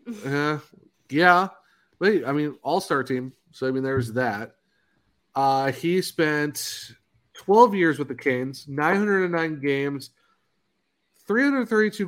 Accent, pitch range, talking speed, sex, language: American, 125-155 Hz, 120 wpm, male, English